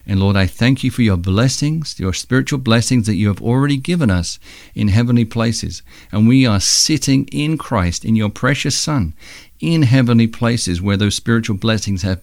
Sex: male